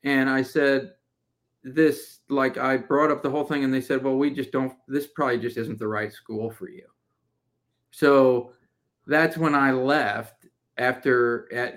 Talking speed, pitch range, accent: 175 wpm, 120-140 Hz, American